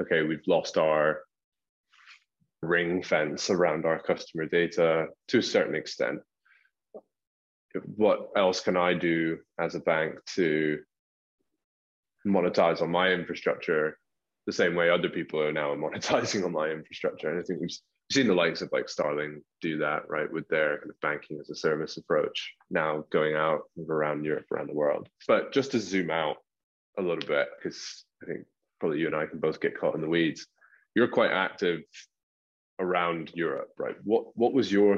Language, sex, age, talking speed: English, male, 20-39, 170 wpm